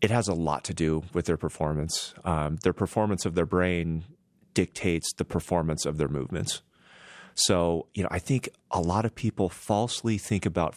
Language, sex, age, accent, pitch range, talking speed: English, male, 30-49, American, 80-95 Hz, 185 wpm